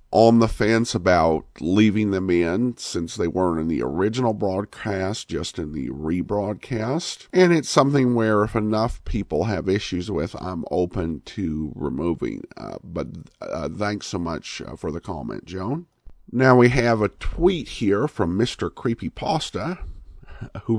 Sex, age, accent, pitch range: male, 50-69, American, 95-120 Hz